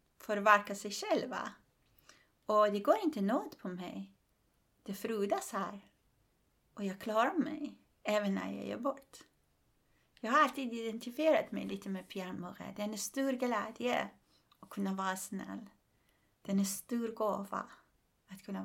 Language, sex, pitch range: Swedish, female, 190-245 Hz